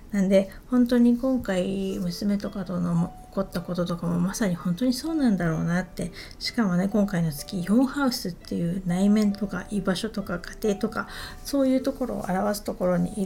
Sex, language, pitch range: female, Japanese, 180-225 Hz